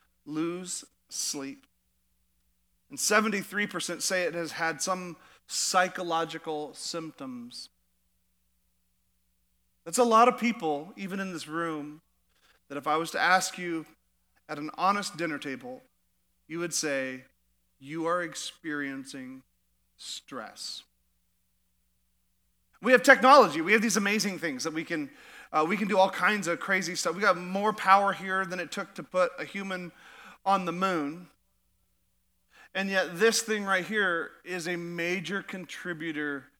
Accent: American